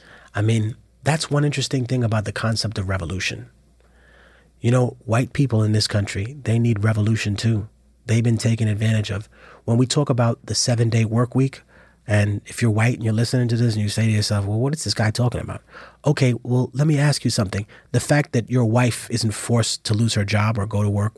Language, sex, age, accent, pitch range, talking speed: English, male, 30-49, American, 110-130 Hz, 220 wpm